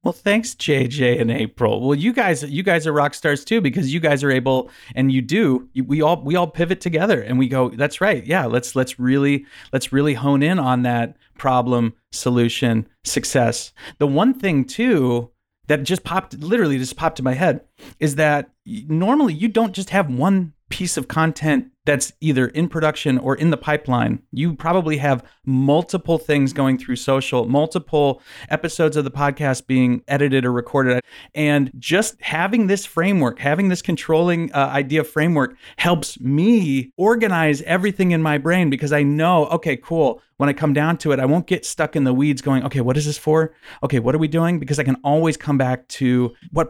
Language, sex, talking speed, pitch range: English, male, 195 wpm, 130-165 Hz